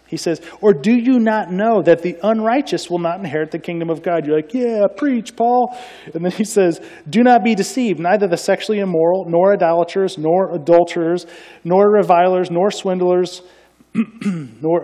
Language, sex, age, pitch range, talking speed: English, male, 30-49, 130-185 Hz, 175 wpm